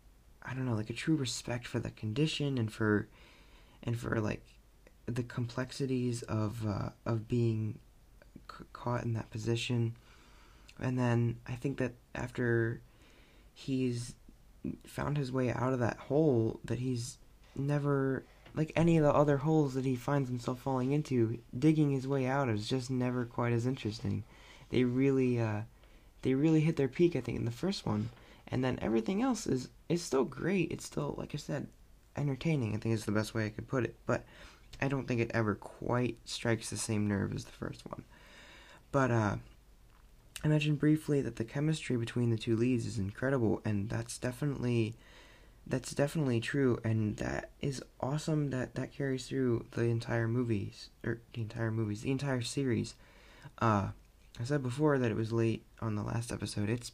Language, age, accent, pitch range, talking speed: English, 20-39, American, 115-135 Hz, 180 wpm